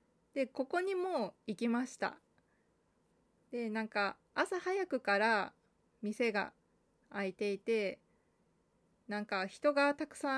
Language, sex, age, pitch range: Japanese, female, 20-39, 205-270 Hz